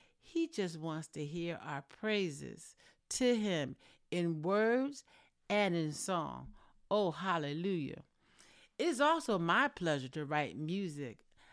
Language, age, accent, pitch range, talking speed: English, 60-79, American, 150-200 Hz, 120 wpm